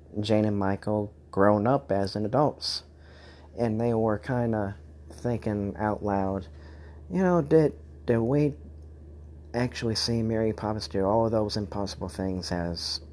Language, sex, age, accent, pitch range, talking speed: English, male, 40-59, American, 80-110 Hz, 145 wpm